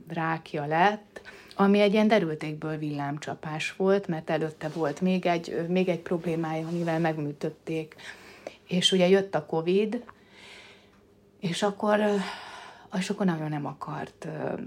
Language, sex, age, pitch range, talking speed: Hungarian, female, 30-49, 150-185 Hz, 125 wpm